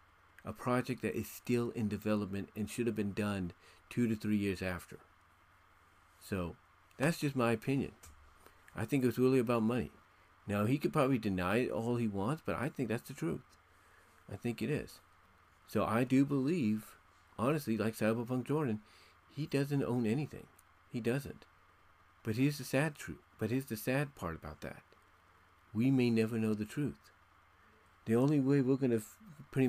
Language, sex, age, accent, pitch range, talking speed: English, male, 40-59, American, 95-120 Hz, 180 wpm